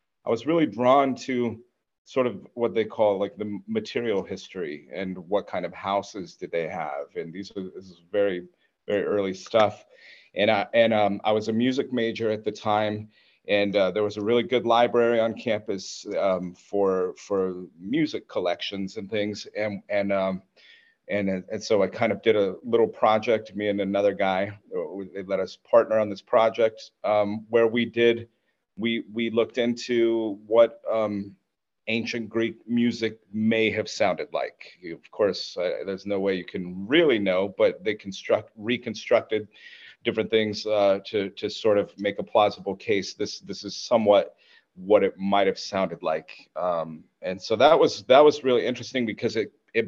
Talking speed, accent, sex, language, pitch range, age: 175 wpm, American, male, English, 100-115 Hz, 40-59